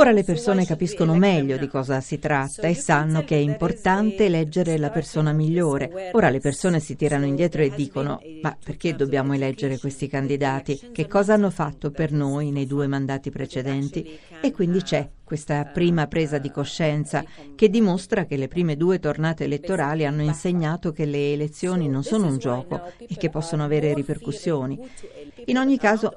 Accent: native